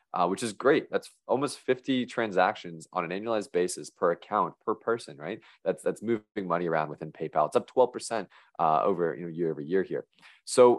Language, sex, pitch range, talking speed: English, male, 85-120 Hz, 200 wpm